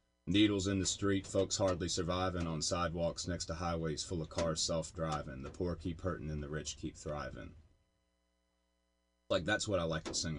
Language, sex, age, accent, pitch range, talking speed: English, male, 30-49, American, 75-95 Hz, 185 wpm